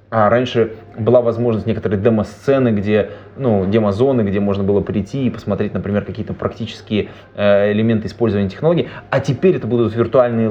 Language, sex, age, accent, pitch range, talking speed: Russian, male, 20-39, native, 105-125 Hz, 150 wpm